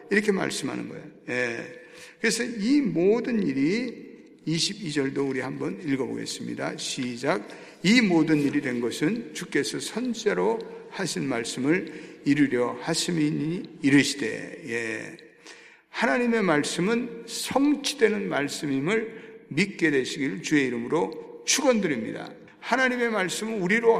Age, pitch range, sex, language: 60-79, 150-235 Hz, male, Korean